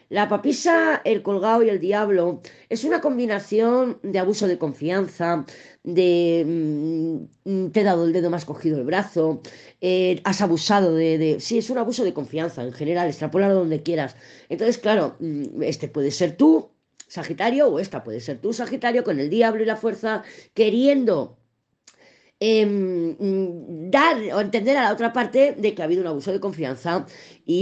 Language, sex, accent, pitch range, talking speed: Spanish, female, Spanish, 160-220 Hz, 170 wpm